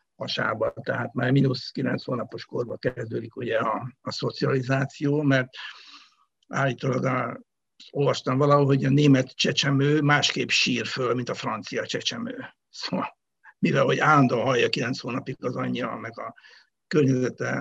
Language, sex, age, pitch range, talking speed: Hungarian, male, 60-79, 130-155 Hz, 135 wpm